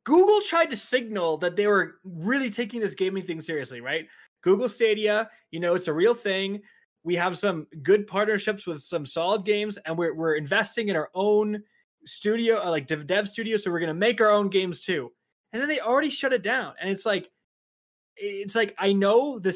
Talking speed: 200 wpm